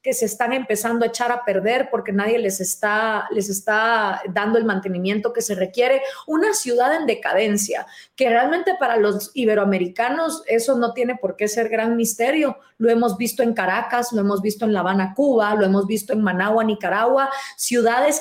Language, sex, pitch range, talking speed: Spanish, female, 205-255 Hz, 185 wpm